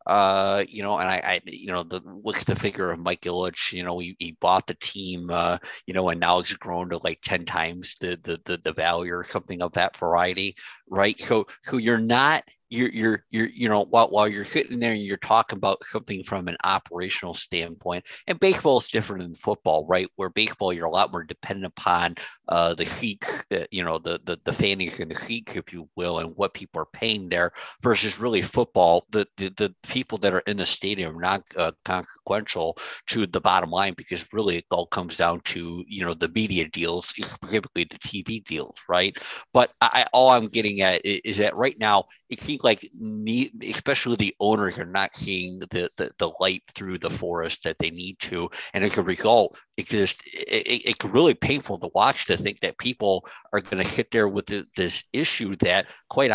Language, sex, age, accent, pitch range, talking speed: English, male, 50-69, American, 90-115 Hz, 210 wpm